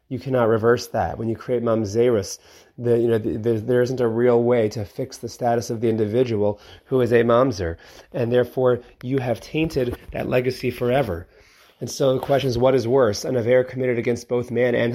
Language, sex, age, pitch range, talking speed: English, male, 30-49, 115-140 Hz, 210 wpm